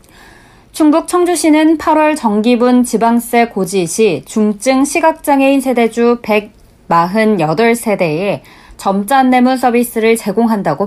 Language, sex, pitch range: Korean, female, 195-255 Hz